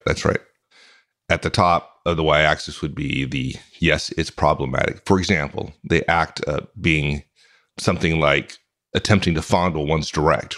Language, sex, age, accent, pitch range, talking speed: English, male, 40-59, American, 80-105 Hz, 155 wpm